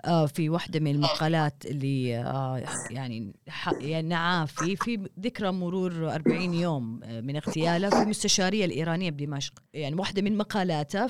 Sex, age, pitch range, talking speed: female, 30-49, 150-200 Hz, 125 wpm